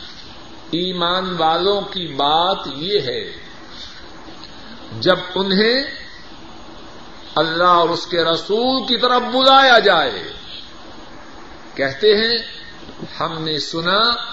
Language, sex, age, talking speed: Urdu, male, 50-69, 90 wpm